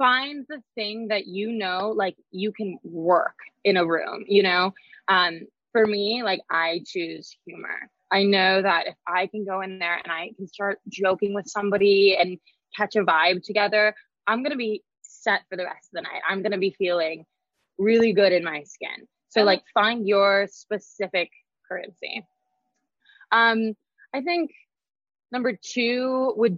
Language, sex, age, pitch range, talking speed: English, female, 20-39, 185-225 Hz, 170 wpm